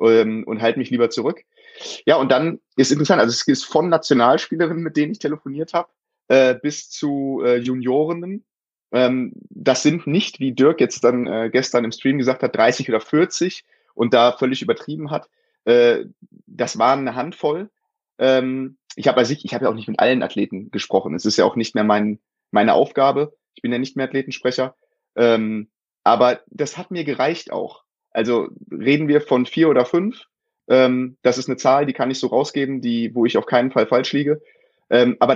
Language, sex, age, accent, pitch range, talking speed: German, male, 30-49, German, 125-155 Hz, 190 wpm